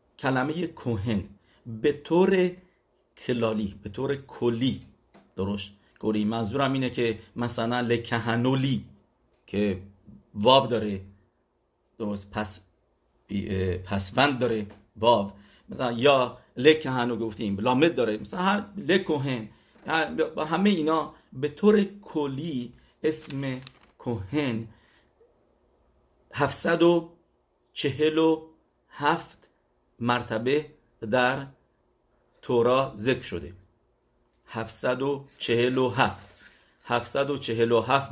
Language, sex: English, male